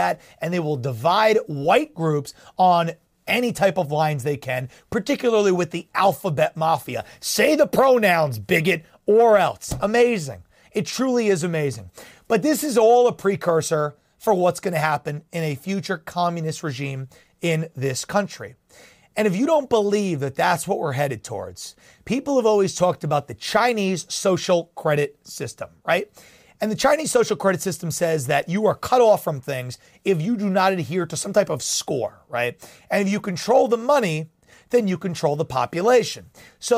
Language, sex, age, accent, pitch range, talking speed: English, male, 30-49, American, 155-210 Hz, 175 wpm